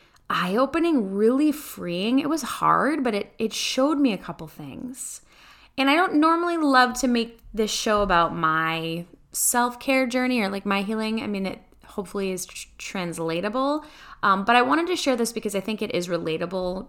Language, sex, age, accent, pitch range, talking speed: English, female, 10-29, American, 175-255 Hz, 180 wpm